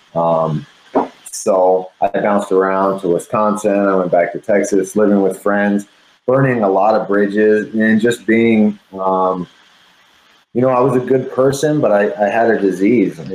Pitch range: 90-105 Hz